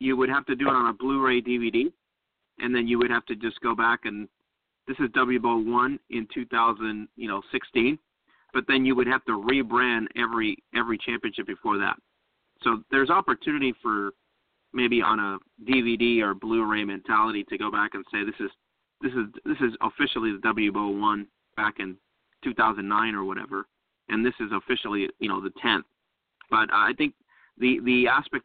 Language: English